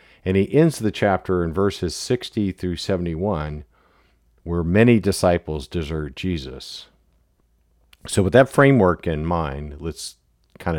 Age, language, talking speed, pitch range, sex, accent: 50-69, English, 130 wpm, 85-115 Hz, male, American